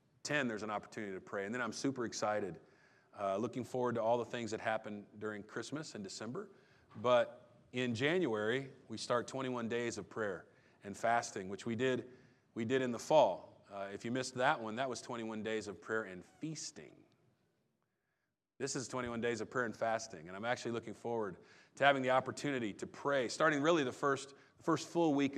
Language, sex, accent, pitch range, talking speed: English, male, American, 110-130 Hz, 190 wpm